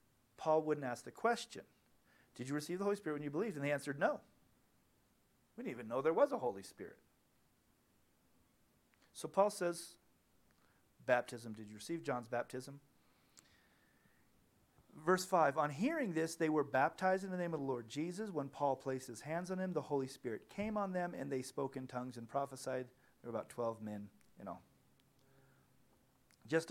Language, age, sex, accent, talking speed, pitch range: English, 40-59, male, American, 175 wpm, 120-155 Hz